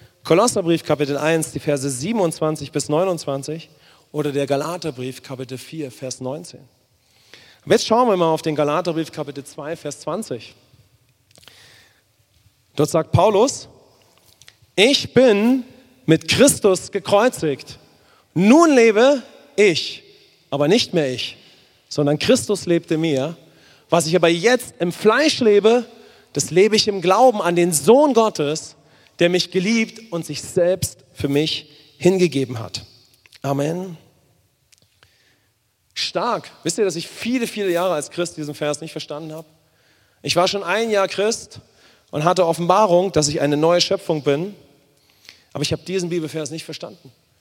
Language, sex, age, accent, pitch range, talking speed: English, male, 30-49, German, 135-180 Hz, 140 wpm